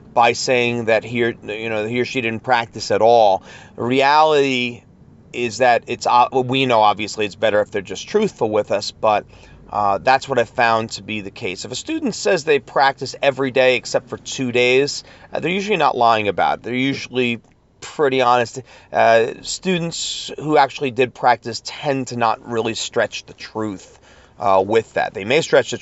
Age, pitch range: 30-49, 110-140 Hz